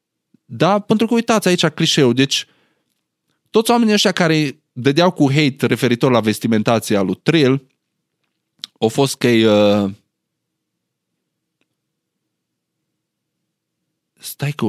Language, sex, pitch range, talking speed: Romanian, male, 120-170 Hz, 105 wpm